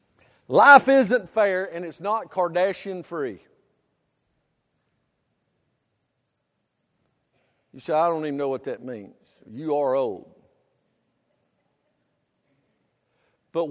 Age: 50-69